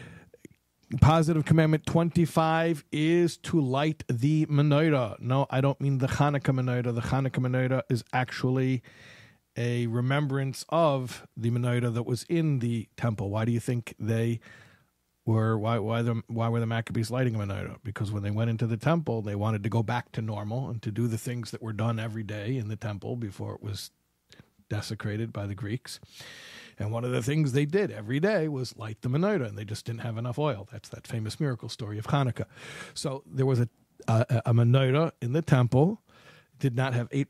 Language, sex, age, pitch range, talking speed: English, male, 50-69, 115-140 Hz, 195 wpm